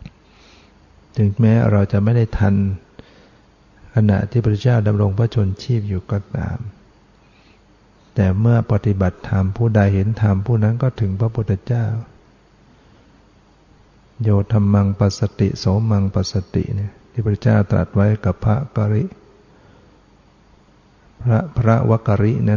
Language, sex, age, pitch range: Thai, male, 60-79, 100-110 Hz